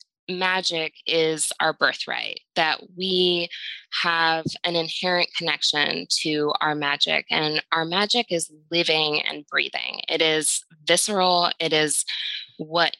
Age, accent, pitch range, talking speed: 20-39, American, 155-185 Hz, 120 wpm